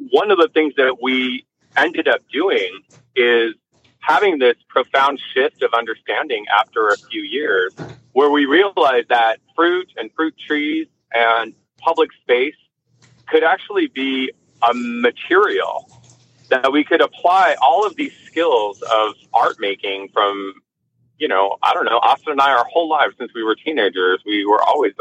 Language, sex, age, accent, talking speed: English, male, 40-59, American, 160 wpm